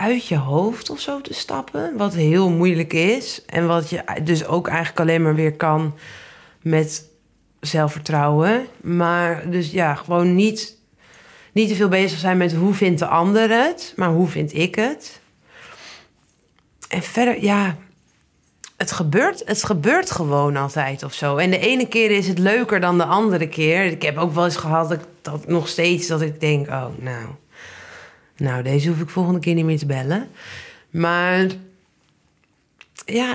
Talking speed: 165 wpm